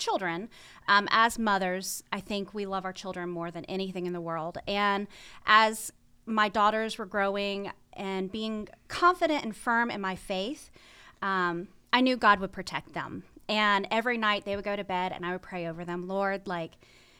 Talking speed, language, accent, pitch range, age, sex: 185 wpm, English, American, 185-235 Hz, 30-49, female